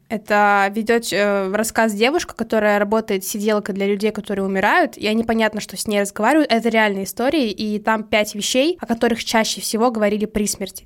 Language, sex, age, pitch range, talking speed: Russian, female, 20-39, 205-245 Hz, 180 wpm